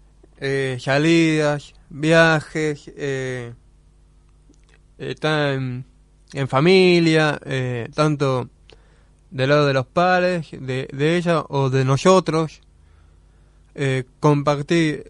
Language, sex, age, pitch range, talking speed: Spanish, male, 20-39, 135-185 Hz, 90 wpm